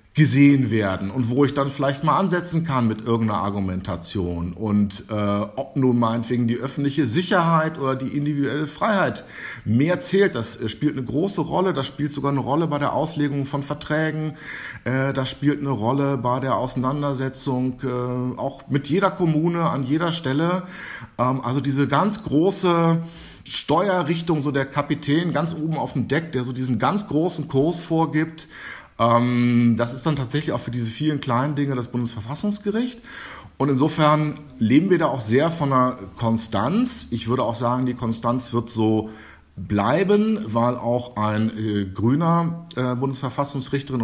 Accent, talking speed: German, 160 wpm